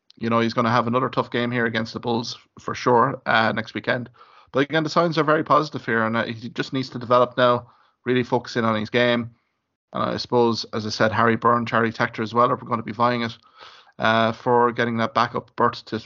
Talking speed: 245 wpm